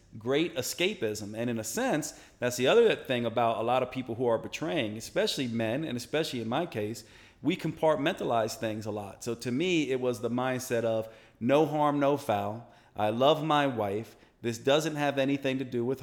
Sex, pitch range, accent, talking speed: male, 115-140 Hz, American, 200 wpm